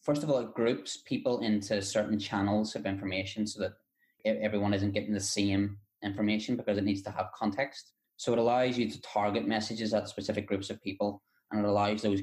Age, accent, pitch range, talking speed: 20-39, British, 100-110 Hz, 200 wpm